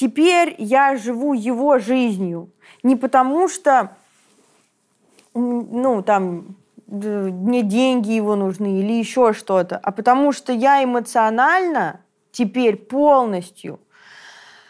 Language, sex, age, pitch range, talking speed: Russian, female, 20-39, 220-280 Hz, 100 wpm